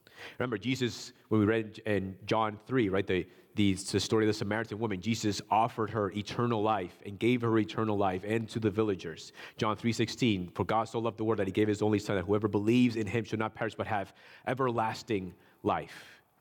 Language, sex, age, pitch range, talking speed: English, male, 30-49, 105-130 Hz, 210 wpm